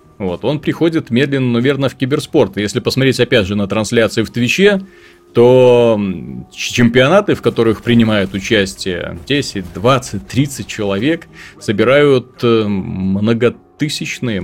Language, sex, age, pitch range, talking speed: Russian, male, 30-49, 105-135 Hz, 110 wpm